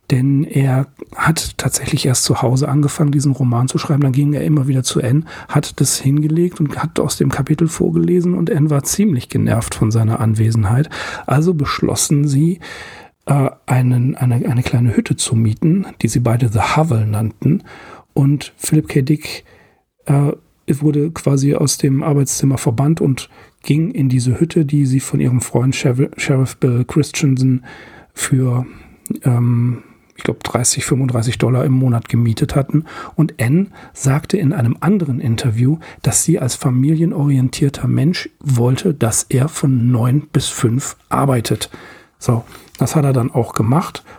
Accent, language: German, English